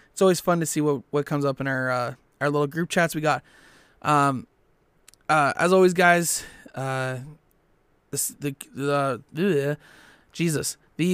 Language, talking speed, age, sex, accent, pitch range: English, 160 wpm, 20-39, male, American, 140-175 Hz